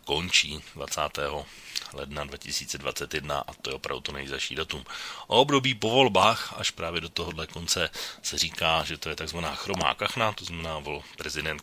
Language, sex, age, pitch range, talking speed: Slovak, male, 30-49, 80-90 Hz, 165 wpm